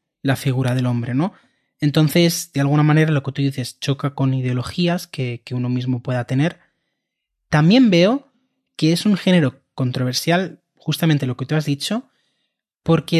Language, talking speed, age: Spanish, 165 wpm, 20-39